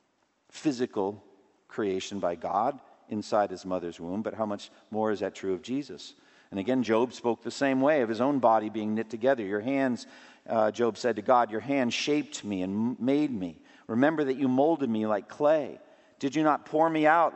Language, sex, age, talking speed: English, male, 50-69, 200 wpm